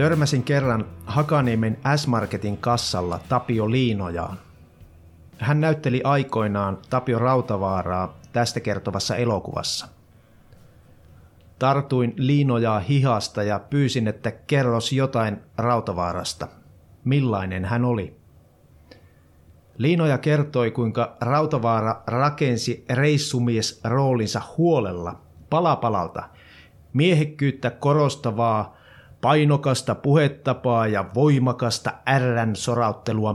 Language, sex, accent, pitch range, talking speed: Finnish, male, native, 100-135 Hz, 75 wpm